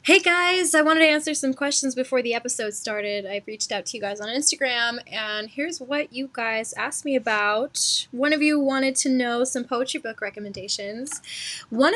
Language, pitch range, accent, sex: English, 215-270 Hz, American, female